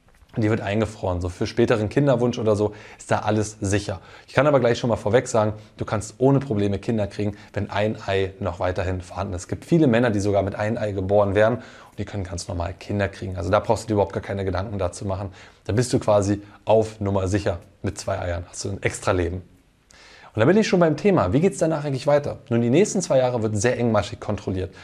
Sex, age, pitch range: male, 20-39, 100-125 Hz